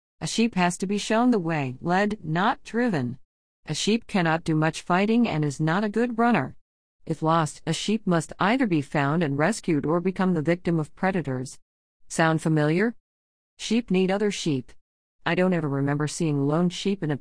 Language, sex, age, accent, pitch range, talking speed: English, female, 50-69, American, 140-185 Hz, 190 wpm